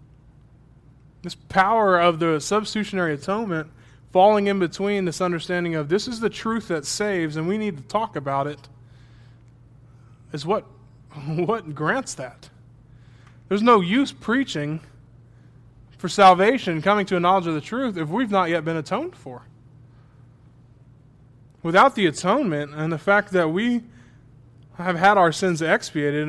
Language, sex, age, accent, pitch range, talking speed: English, male, 20-39, American, 135-190 Hz, 145 wpm